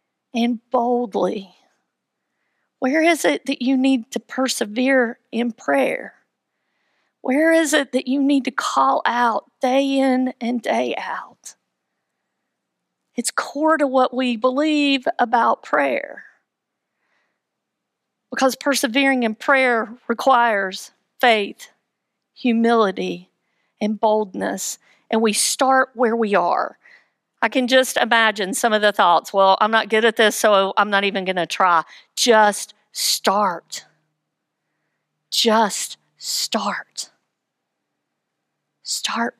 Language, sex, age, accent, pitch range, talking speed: English, female, 50-69, American, 225-265 Hz, 115 wpm